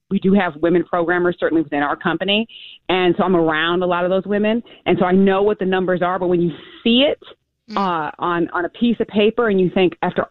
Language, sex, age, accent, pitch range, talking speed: English, female, 30-49, American, 165-195 Hz, 245 wpm